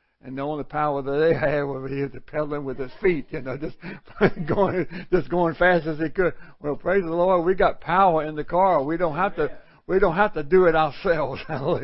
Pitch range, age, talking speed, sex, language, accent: 145-190 Hz, 60-79, 225 wpm, male, English, American